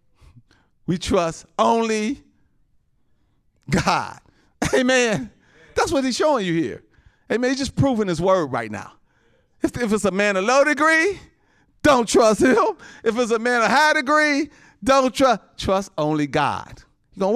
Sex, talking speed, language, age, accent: male, 145 wpm, English, 40-59, American